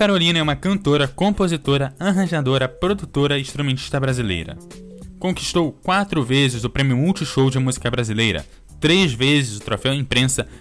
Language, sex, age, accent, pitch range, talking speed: Portuguese, male, 10-29, Brazilian, 125-160 Hz, 135 wpm